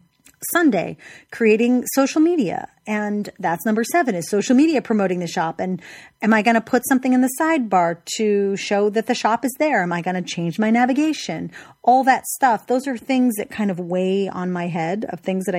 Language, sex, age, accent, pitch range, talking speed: English, female, 30-49, American, 185-240 Hz, 210 wpm